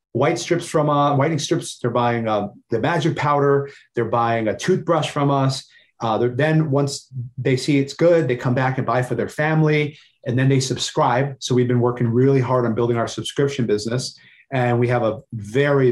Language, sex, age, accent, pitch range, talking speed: English, male, 30-49, American, 115-140 Hz, 195 wpm